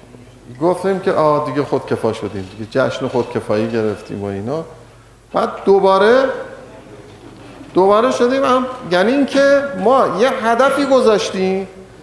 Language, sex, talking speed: Persian, male, 130 wpm